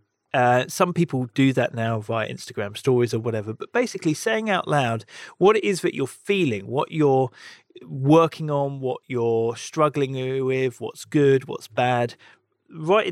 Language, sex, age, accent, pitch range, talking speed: English, male, 40-59, British, 120-160 Hz, 160 wpm